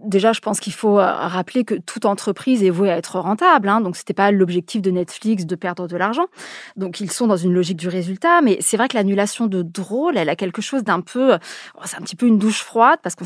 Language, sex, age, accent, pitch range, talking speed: French, female, 20-39, French, 185-235 Hz, 260 wpm